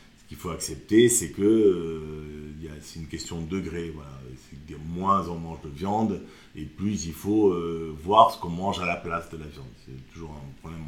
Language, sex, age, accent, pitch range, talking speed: French, male, 50-69, French, 75-100 Hz, 220 wpm